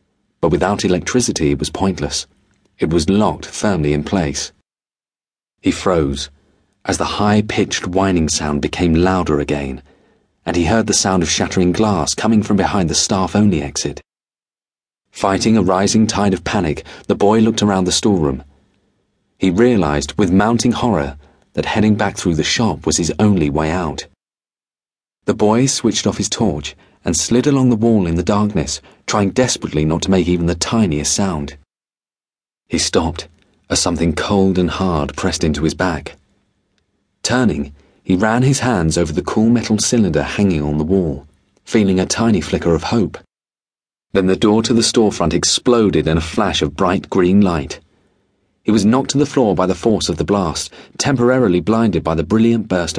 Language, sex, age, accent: English, male, 40-59, British